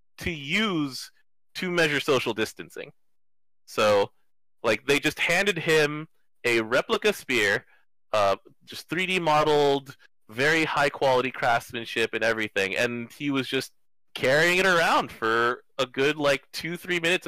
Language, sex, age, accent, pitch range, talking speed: English, male, 30-49, American, 120-165 Hz, 130 wpm